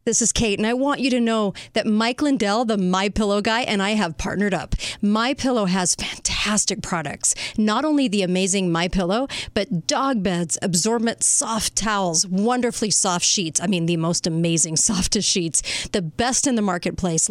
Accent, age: American, 40-59